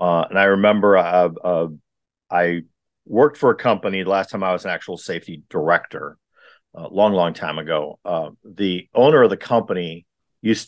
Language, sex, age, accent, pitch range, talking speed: English, male, 50-69, American, 100-135 Hz, 180 wpm